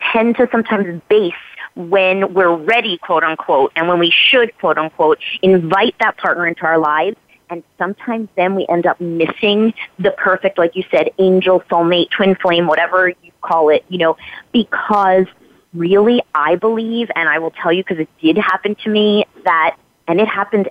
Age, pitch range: 30-49, 180-220 Hz